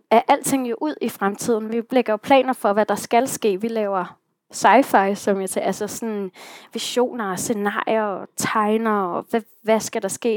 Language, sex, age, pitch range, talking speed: Danish, female, 20-39, 200-235 Hz, 195 wpm